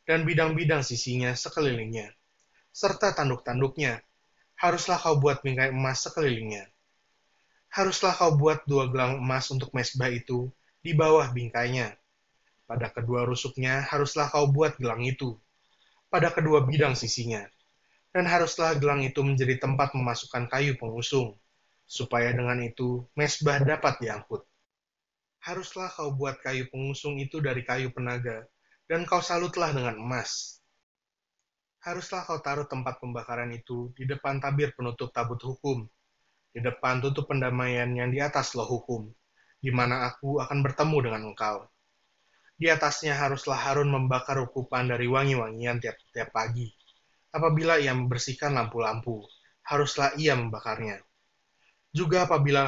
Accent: native